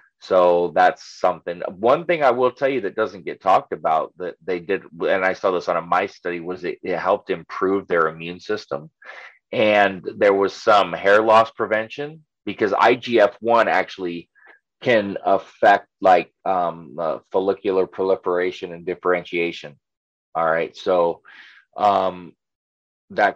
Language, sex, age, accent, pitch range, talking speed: English, male, 30-49, American, 90-115 Hz, 150 wpm